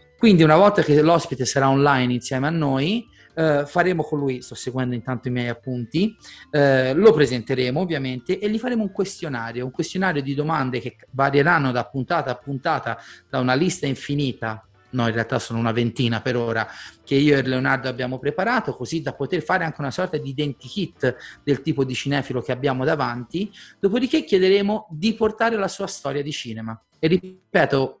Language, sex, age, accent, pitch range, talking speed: Italian, male, 30-49, native, 130-175 Hz, 180 wpm